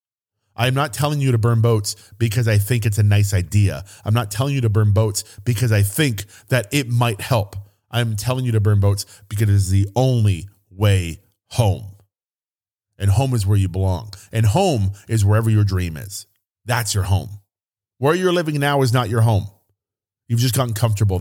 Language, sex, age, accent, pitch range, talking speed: English, male, 30-49, American, 100-125 Hz, 195 wpm